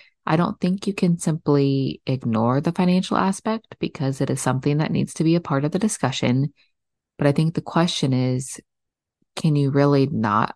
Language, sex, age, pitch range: English, female, 20-39, 125-170 Hz